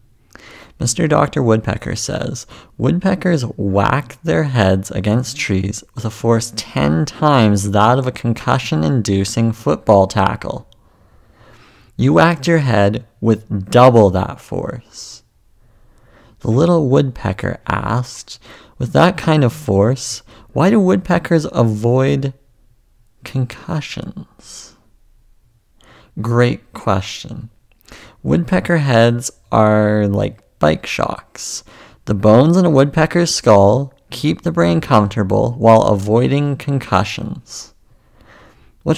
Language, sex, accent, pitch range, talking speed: English, male, American, 105-135 Hz, 100 wpm